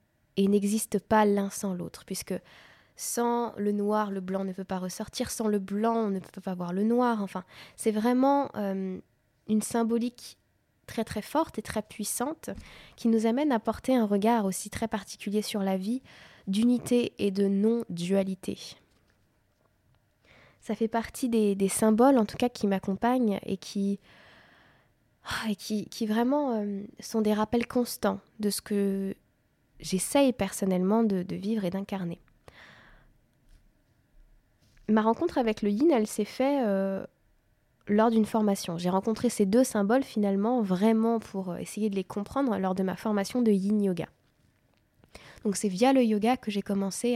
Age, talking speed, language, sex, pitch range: 20-39, 160 wpm, French, female, 195-230 Hz